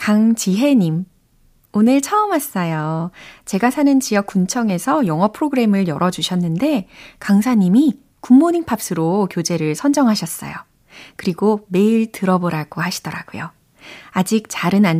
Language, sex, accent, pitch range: Korean, female, native, 165-220 Hz